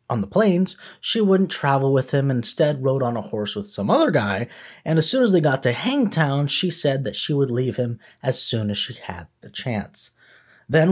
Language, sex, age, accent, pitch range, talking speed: English, male, 20-39, American, 110-155 Hz, 225 wpm